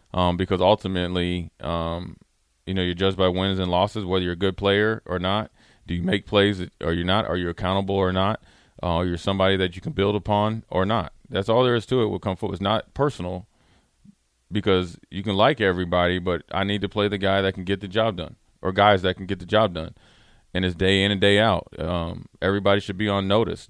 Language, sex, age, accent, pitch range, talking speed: English, male, 30-49, American, 90-105 Hz, 235 wpm